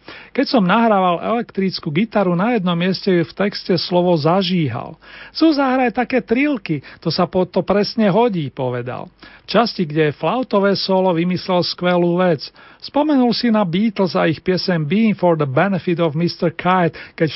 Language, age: Slovak, 40-59